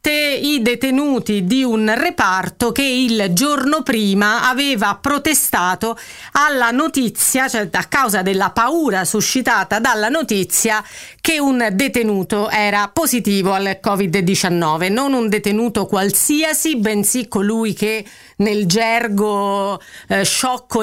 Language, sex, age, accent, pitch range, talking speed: Italian, female, 40-59, native, 200-255 Hz, 110 wpm